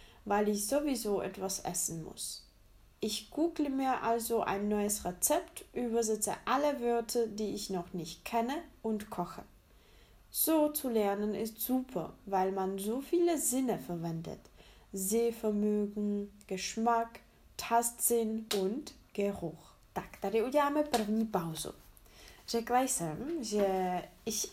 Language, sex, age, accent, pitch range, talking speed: Czech, female, 10-29, German, 190-240 Hz, 100 wpm